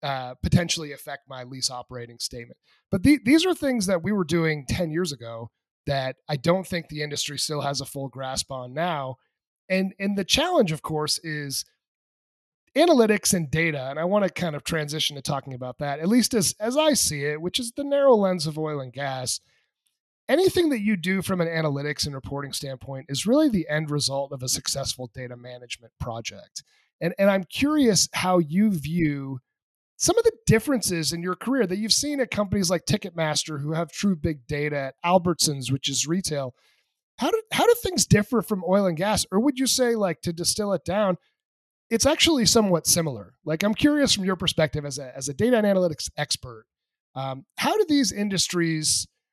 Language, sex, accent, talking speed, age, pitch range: English, male, American, 200 wpm, 30-49, 140-200 Hz